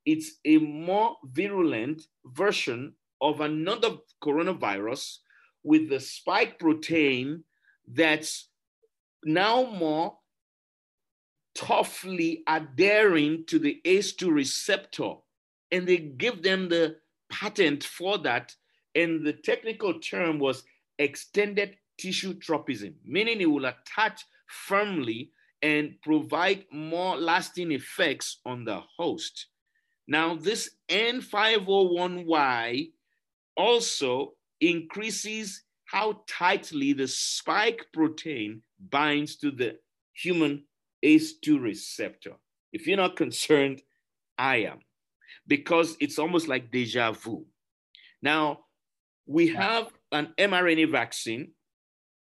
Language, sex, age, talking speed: English, male, 50-69, 95 wpm